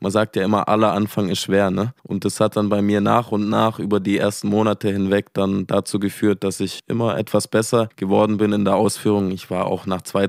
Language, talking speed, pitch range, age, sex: German, 240 wpm, 95-105 Hz, 20-39, male